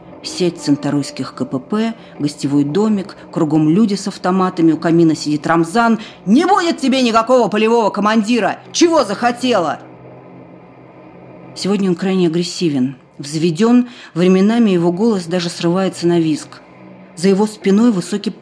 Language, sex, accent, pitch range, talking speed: Russian, female, native, 155-225 Hz, 120 wpm